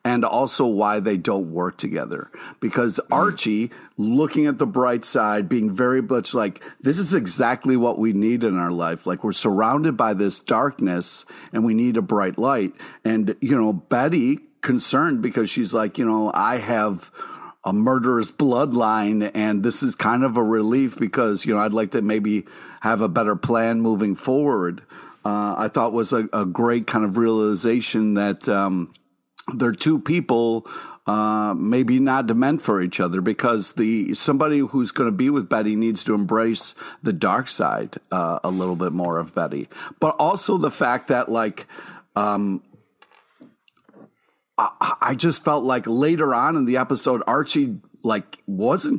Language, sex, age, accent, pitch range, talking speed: English, male, 50-69, American, 100-125 Hz, 170 wpm